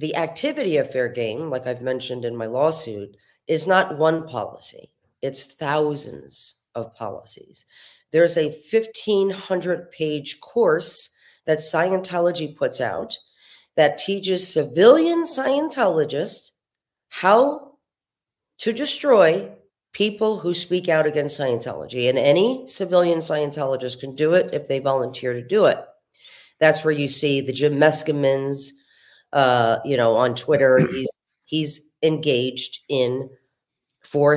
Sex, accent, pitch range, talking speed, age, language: female, American, 135-185 Hz, 120 wpm, 40-59, English